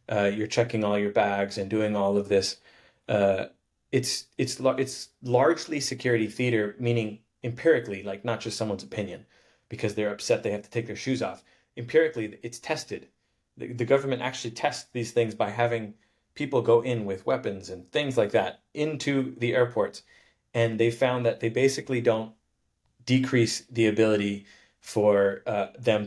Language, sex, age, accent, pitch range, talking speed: English, male, 30-49, American, 105-125 Hz, 165 wpm